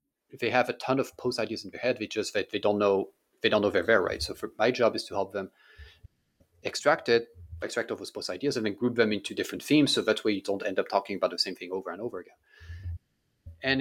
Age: 30-49